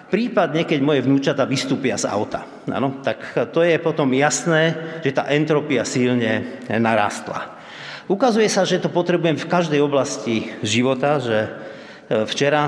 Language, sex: Slovak, male